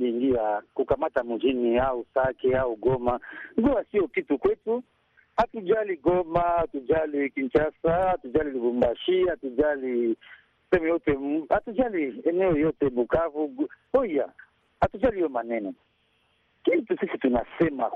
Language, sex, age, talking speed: Swahili, male, 60-79, 105 wpm